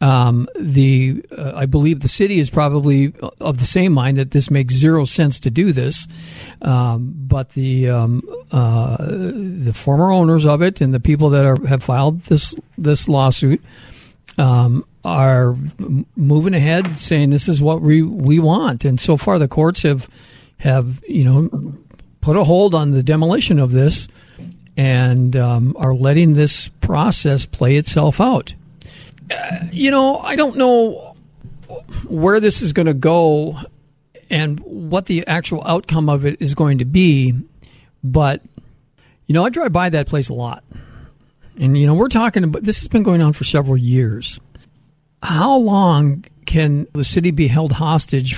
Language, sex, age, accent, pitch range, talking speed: English, male, 50-69, American, 135-165 Hz, 165 wpm